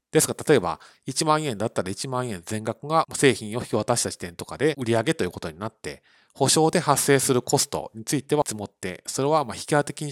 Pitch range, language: 105-150 Hz, Japanese